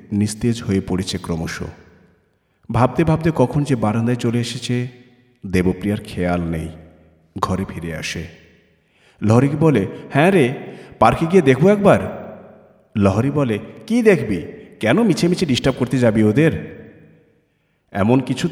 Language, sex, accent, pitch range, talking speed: Bengali, male, native, 105-165 Hz, 125 wpm